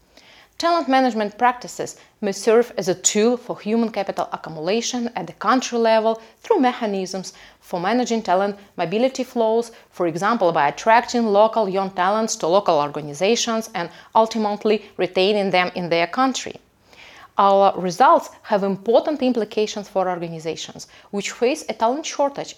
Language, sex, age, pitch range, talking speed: French, female, 30-49, 195-255 Hz, 140 wpm